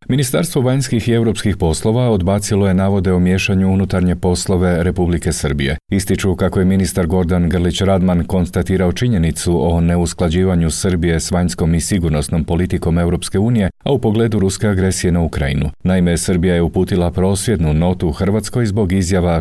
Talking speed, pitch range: 140 wpm, 85-100 Hz